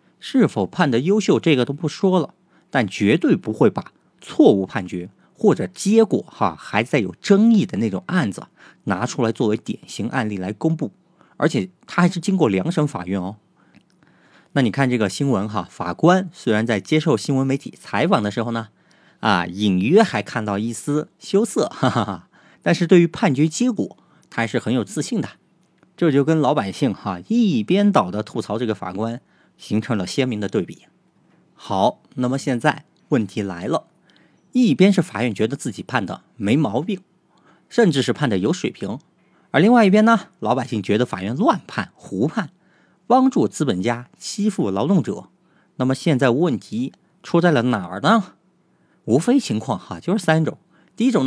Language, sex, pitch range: Chinese, male, 115-190 Hz